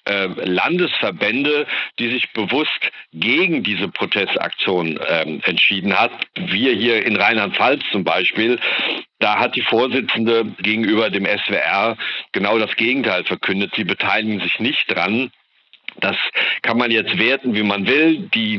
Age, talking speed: 50-69, 130 wpm